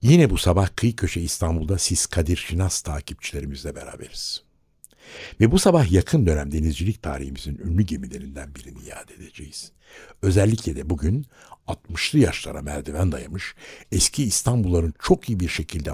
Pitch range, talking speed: 75-105 Hz, 135 wpm